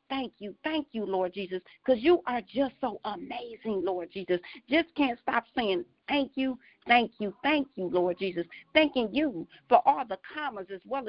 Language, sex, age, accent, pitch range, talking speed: English, female, 50-69, American, 200-290 Hz, 185 wpm